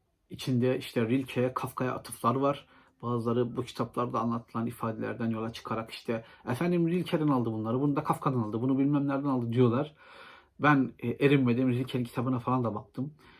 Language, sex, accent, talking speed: Turkish, male, native, 150 wpm